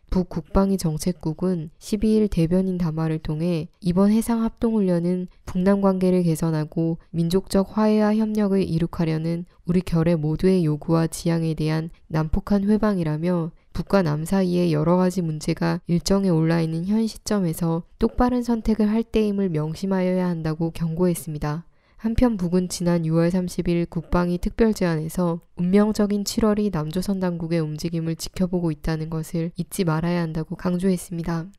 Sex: female